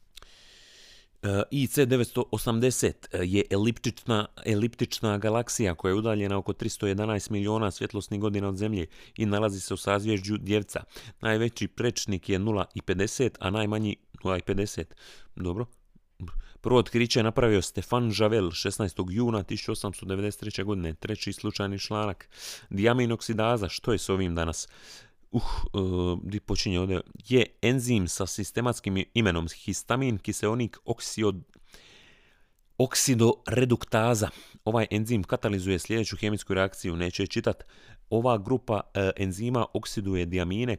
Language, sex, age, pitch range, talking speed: Croatian, male, 30-49, 95-115 Hz, 105 wpm